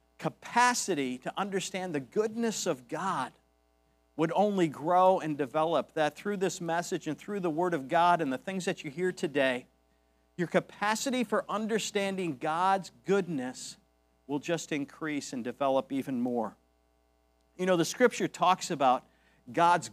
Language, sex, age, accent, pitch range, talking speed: English, male, 50-69, American, 140-195 Hz, 150 wpm